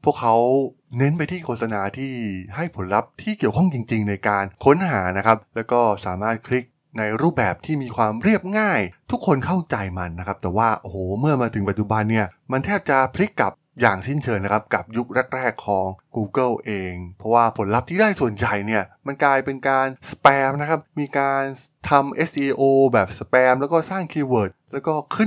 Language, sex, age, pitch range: Thai, male, 20-39, 105-145 Hz